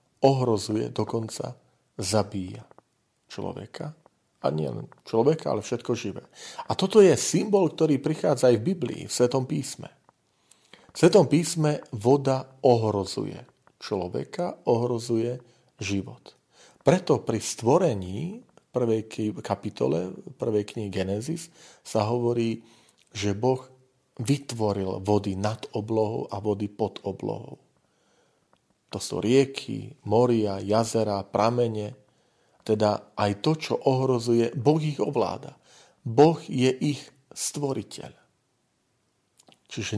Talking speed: 105 wpm